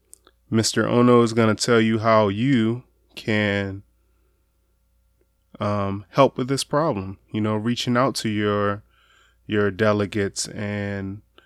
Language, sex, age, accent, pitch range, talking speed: English, male, 20-39, American, 105-115 Hz, 125 wpm